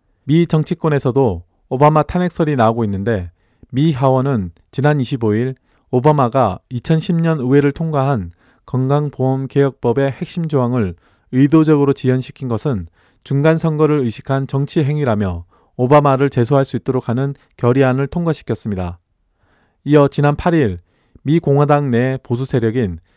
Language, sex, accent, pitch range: Korean, male, native, 115-150 Hz